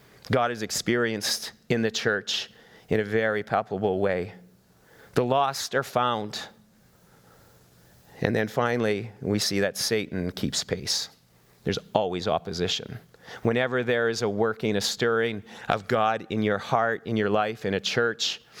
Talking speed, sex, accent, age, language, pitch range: 145 wpm, male, American, 40-59, English, 110-145 Hz